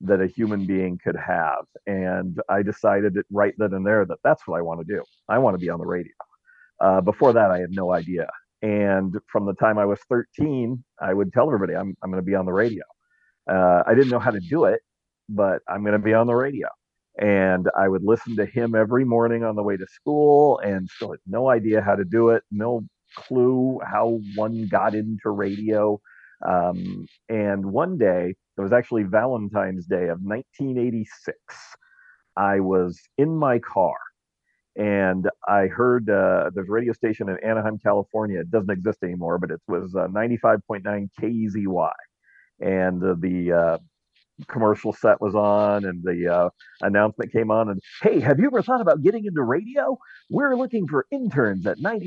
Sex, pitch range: male, 95-120 Hz